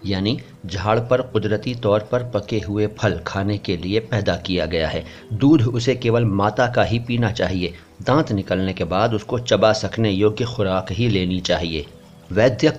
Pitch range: 100-120 Hz